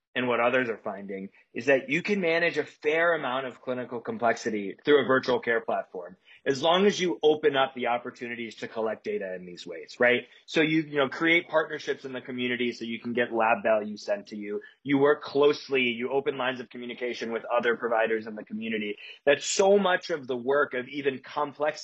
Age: 30-49